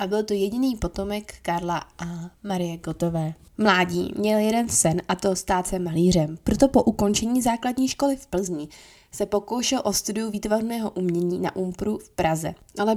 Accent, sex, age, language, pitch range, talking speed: native, female, 20-39, Czech, 180-225 Hz, 165 wpm